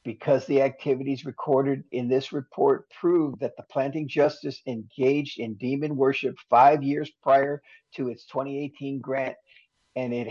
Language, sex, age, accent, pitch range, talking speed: English, male, 50-69, American, 125-145 Hz, 145 wpm